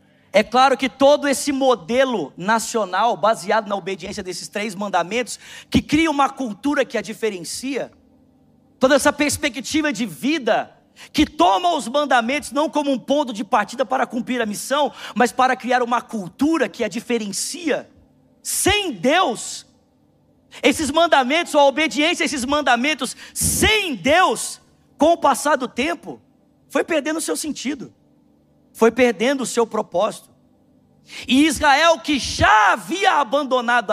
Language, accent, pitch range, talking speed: Portuguese, Brazilian, 230-290 Hz, 140 wpm